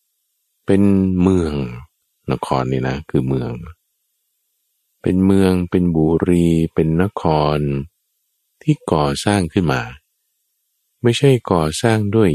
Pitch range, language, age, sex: 70-95 Hz, Thai, 20-39, male